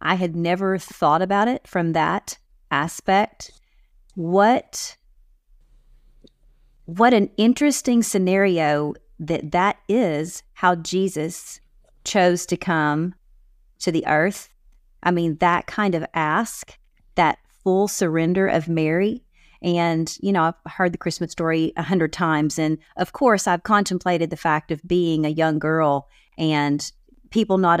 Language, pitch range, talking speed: English, 165-200 Hz, 135 wpm